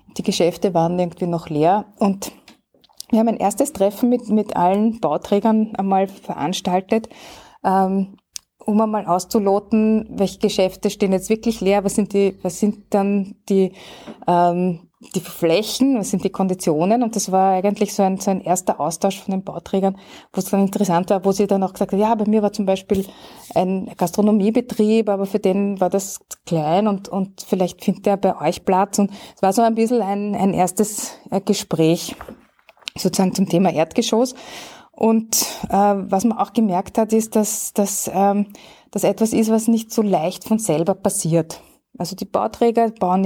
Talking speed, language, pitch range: 170 wpm, German, 180-215 Hz